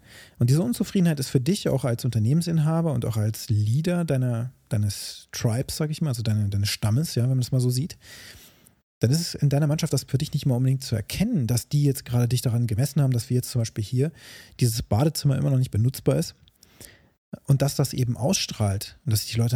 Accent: German